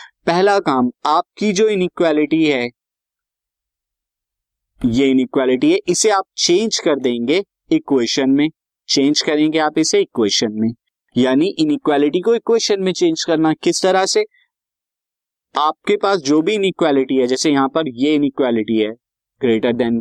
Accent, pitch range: native, 120-190 Hz